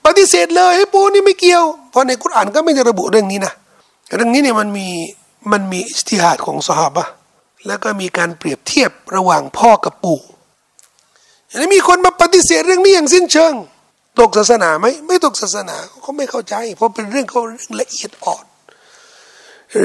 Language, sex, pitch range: Thai, male, 220-350 Hz